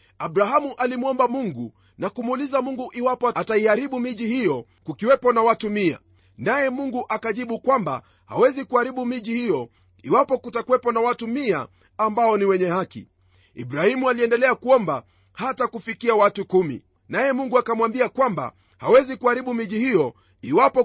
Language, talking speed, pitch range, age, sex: Swahili, 135 wpm, 175-255 Hz, 40-59, male